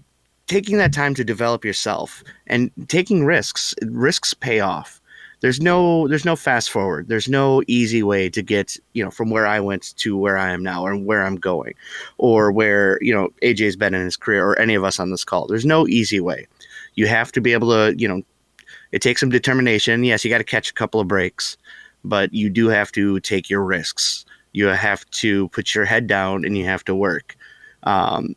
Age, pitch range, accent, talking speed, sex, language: 30-49, 100-120 Hz, American, 215 wpm, male, English